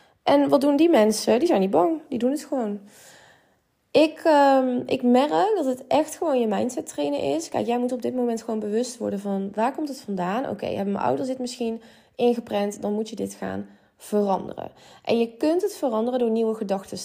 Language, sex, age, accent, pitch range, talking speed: Dutch, female, 20-39, Dutch, 195-240 Hz, 210 wpm